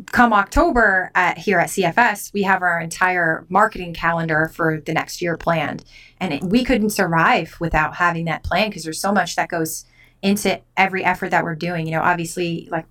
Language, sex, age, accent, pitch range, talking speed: English, female, 20-39, American, 170-215 Hz, 195 wpm